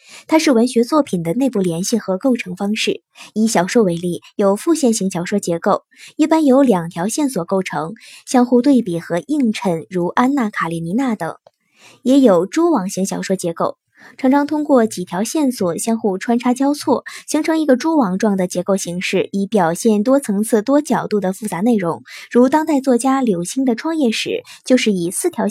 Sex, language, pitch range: male, Chinese, 195-270 Hz